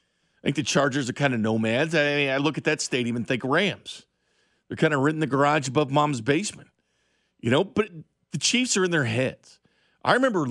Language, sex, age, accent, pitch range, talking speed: English, male, 50-69, American, 120-175 Hz, 210 wpm